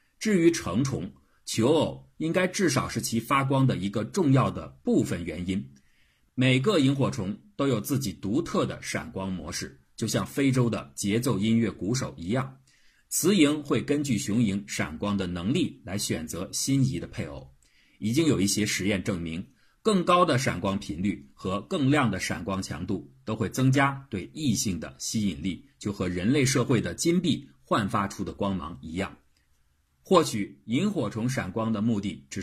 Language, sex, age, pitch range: Chinese, male, 50-69, 90-130 Hz